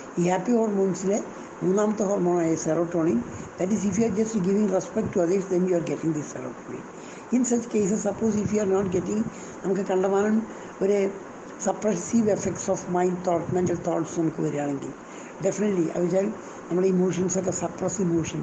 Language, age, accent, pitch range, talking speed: Malayalam, 60-79, native, 160-210 Hz, 160 wpm